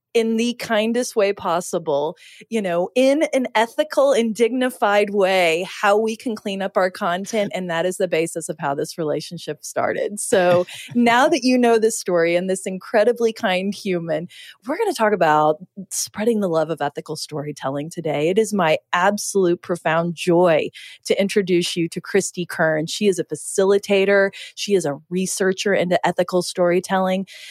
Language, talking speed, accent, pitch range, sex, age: English, 170 wpm, American, 165-205 Hz, female, 30-49